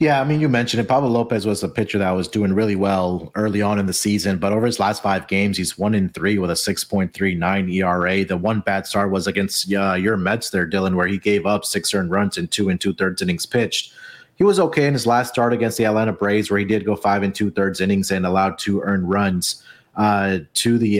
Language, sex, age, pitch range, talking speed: English, male, 30-49, 95-115 Hz, 245 wpm